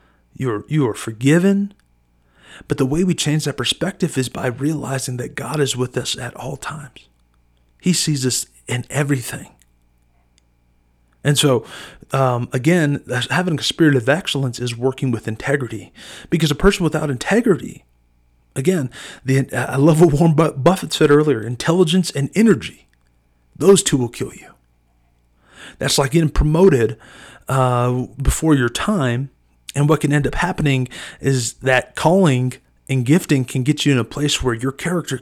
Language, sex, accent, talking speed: English, male, American, 155 wpm